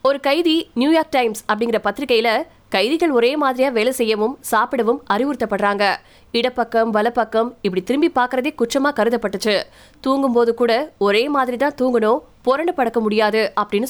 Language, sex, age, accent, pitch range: Tamil, female, 20-39, native, 215-260 Hz